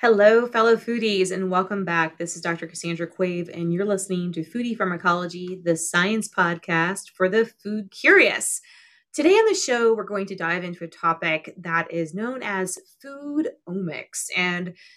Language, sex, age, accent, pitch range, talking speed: English, female, 30-49, American, 170-215 Hz, 170 wpm